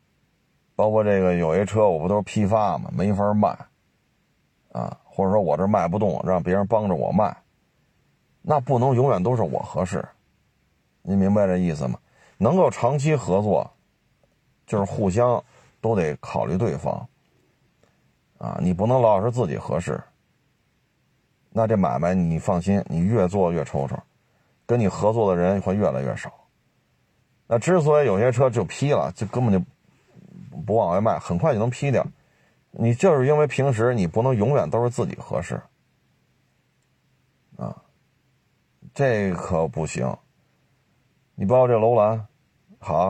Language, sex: Chinese, male